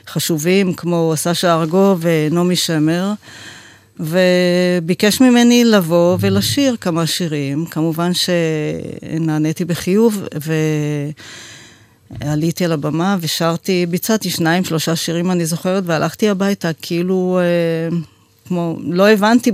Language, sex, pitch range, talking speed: Hebrew, female, 155-180 Hz, 95 wpm